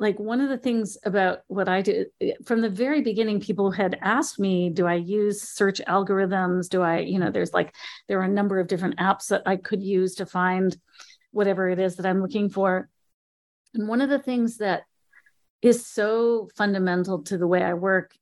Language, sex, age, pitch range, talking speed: English, female, 40-59, 180-220 Hz, 205 wpm